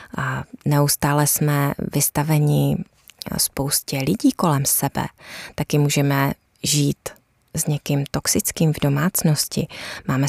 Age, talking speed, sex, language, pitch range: 20-39, 100 wpm, female, Czech, 145-185 Hz